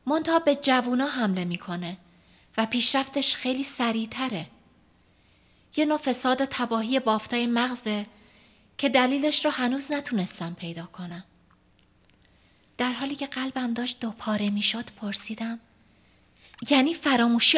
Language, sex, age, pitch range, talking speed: Persian, female, 30-49, 190-265 Hz, 105 wpm